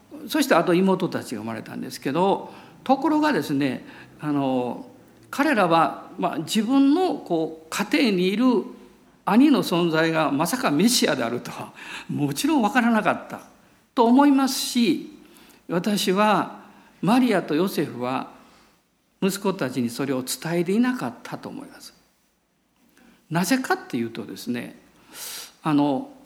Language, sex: Japanese, male